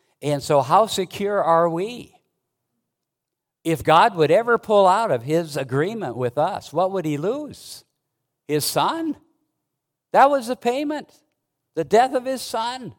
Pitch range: 140-200 Hz